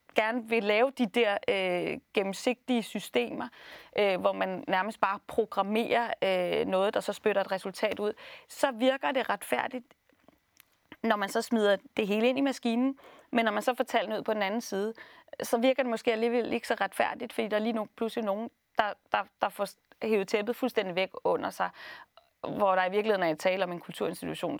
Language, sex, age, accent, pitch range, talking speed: Danish, female, 30-49, native, 195-245 Hz, 200 wpm